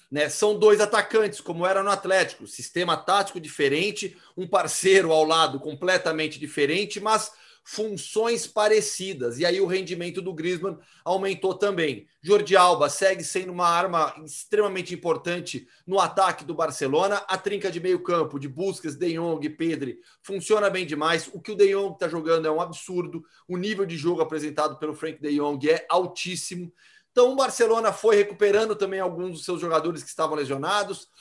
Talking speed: 165 wpm